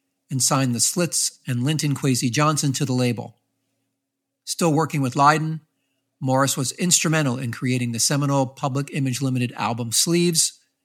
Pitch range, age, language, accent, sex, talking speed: 125-145 Hz, 50-69, English, American, male, 150 wpm